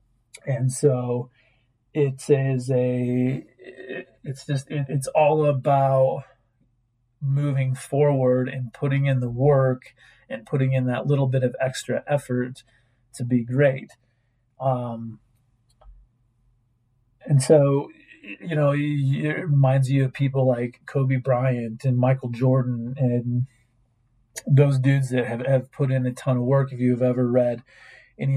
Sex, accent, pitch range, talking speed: male, American, 120-135 Hz, 135 wpm